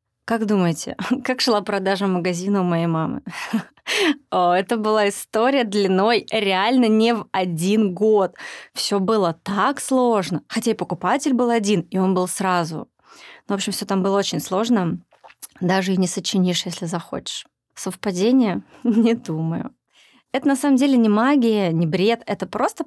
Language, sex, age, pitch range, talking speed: Russian, female, 20-39, 185-235 Hz, 150 wpm